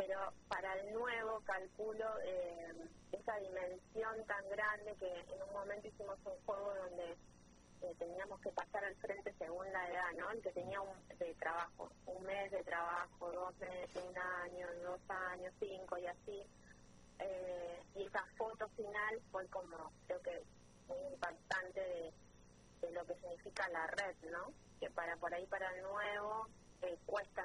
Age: 20-39